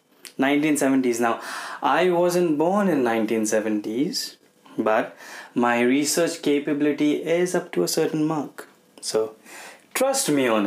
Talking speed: 120 wpm